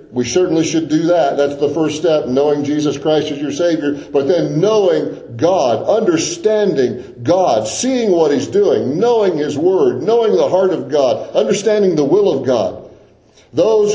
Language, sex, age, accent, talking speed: English, male, 50-69, American, 170 wpm